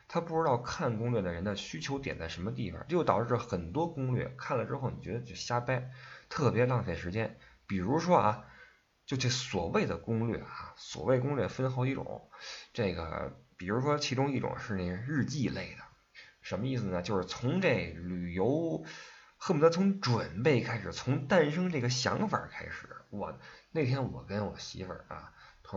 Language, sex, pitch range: Chinese, male, 90-130 Hz